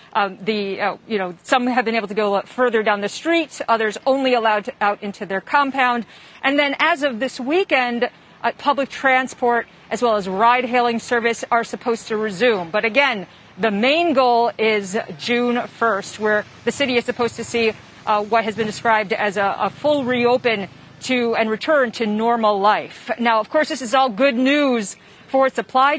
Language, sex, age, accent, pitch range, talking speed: English, female, 40-59, American, 220-265 Hz, 190 wpm